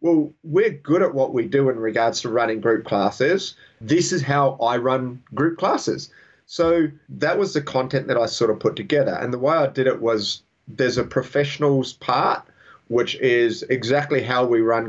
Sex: male